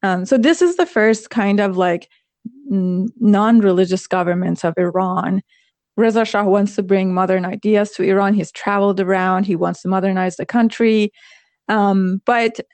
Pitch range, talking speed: 180-225 Hz, 160 wpm